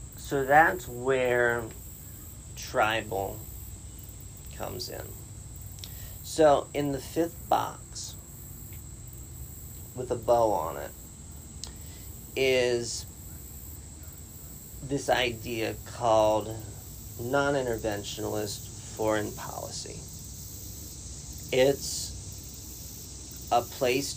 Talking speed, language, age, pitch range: 65 wpm, English, 40-59, 95-120 Hz